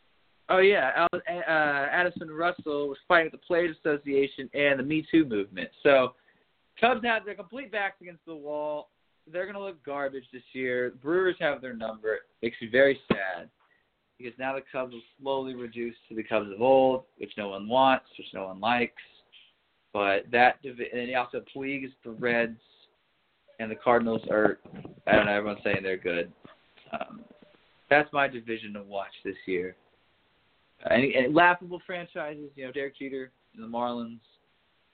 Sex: male